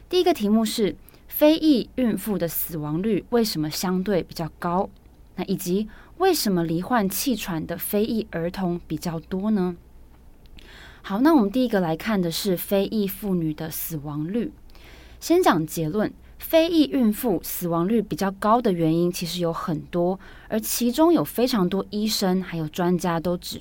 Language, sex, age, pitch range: Chinese, female, 20-39, 165-220 Hz